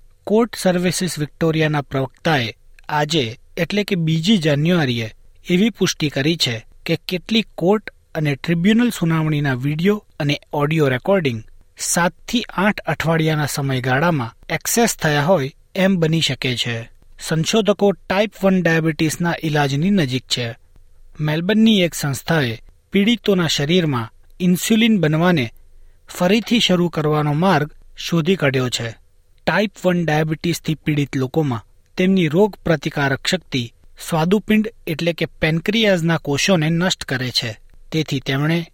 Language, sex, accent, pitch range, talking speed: Gujarati, male, native, 140-185 Hz, 115 wpm